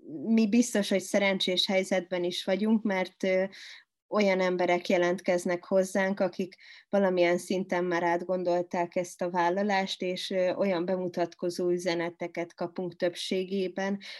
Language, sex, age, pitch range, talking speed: Hungarian, female, 20-39, 175-195 Hz, 110 wpm